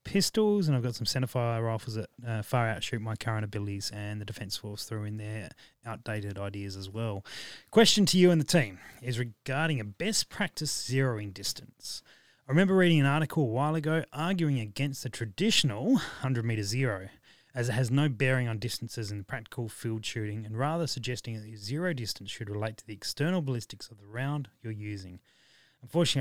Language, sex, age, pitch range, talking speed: English, male, 20-39, 110-150 Hz, 190 wpm